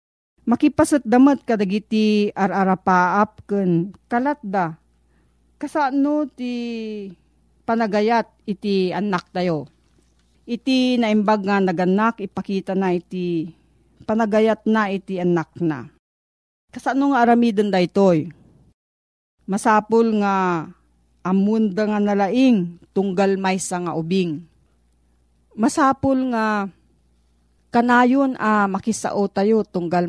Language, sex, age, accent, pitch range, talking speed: Filipino, female, 40-59, native, 170-225 Hz, 90 wpm